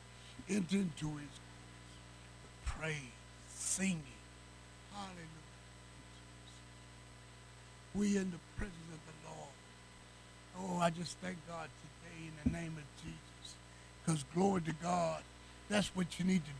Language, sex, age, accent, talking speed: English, male, 60-79, American, 125 wpm